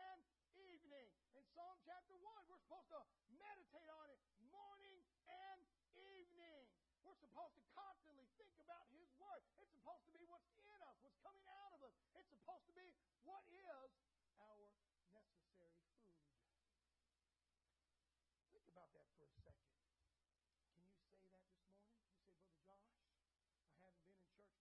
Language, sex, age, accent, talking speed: English, male, 50-69, American, 155 wpm